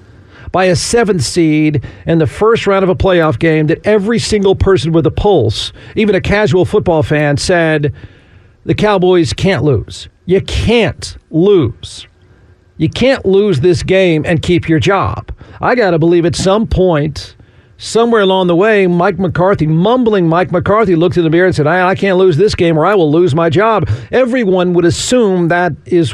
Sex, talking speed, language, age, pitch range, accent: male, 185 wpm, English, 50-69, 120-190 Hz, American